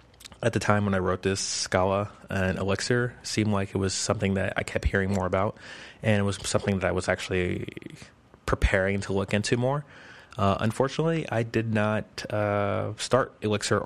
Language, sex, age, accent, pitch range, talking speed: English, male, 20-39, American, 95-105 Hz, 180 wpm